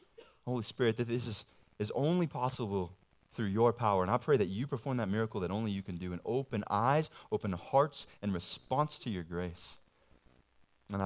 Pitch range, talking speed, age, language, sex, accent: 95-135 Hz, 190 wpm, 20-39, English, male, American